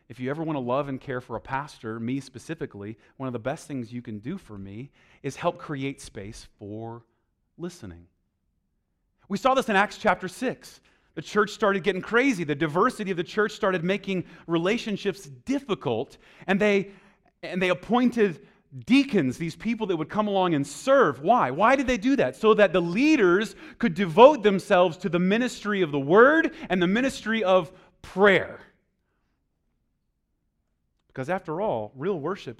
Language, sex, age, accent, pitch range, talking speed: English, male, 30-49, American, 115-185 Hz, 170 wpm